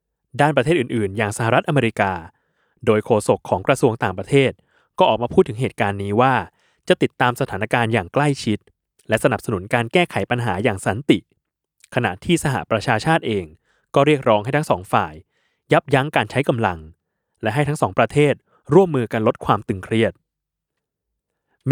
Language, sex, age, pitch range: Thai, male, 20-39, 100-140 Hz